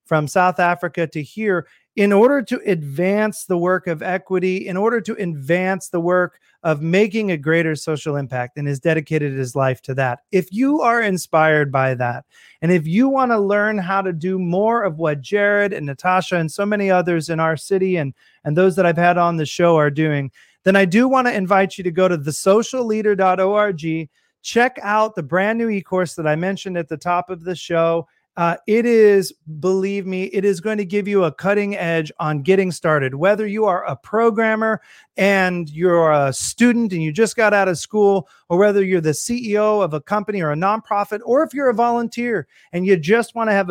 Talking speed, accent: 205 wpm, American